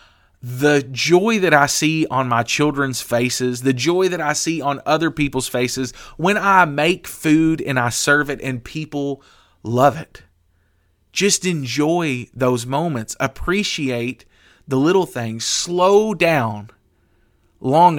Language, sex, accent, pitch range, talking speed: English, male, American, 115-170 Hz, 135 wpm